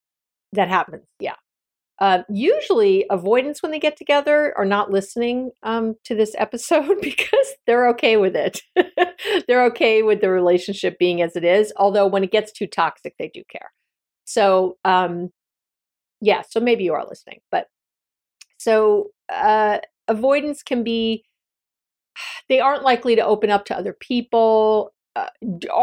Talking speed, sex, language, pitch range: 150 wpm, female, English, 190-240 Hz